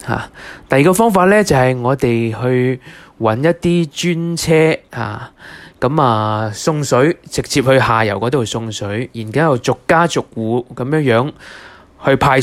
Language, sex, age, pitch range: Chinese, male, 20-39, 115-160 Hz